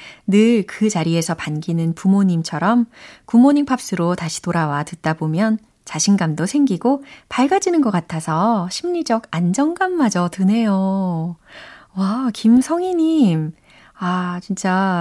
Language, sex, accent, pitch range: Korean, female, native, 165-230 Hz